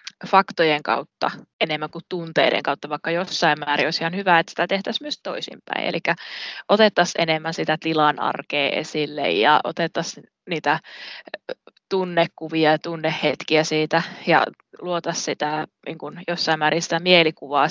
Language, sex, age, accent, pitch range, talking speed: Finnish, female, 20-39, native, 150-170 Hz, 130 wpm